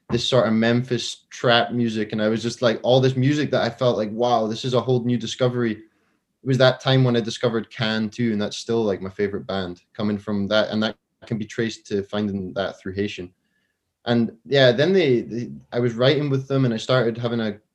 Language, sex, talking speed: English, male, 235 wpm